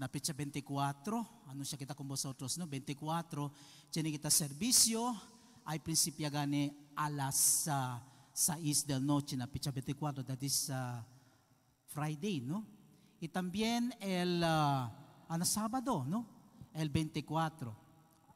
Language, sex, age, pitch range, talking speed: English, male, 50-69, 145-205 Hz, 130 wpm